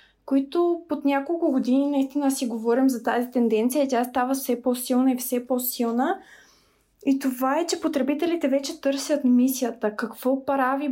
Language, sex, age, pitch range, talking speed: Bulgarian, female, 20-39, 245-275 Hz, 150 wpm